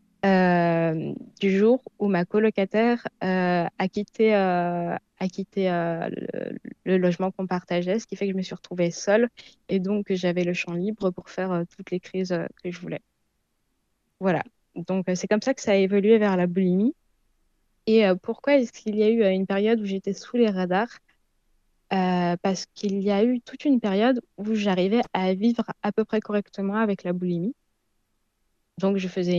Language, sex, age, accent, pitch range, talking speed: French, female, 20-39, French, 175-210 Hz, 190 wpm